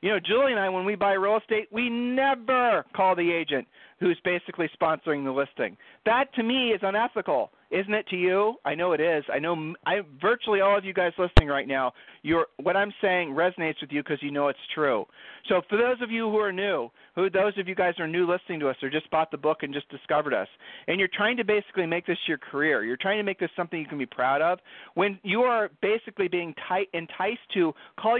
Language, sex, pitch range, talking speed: English, male, 150-210 Hz, 240 wpm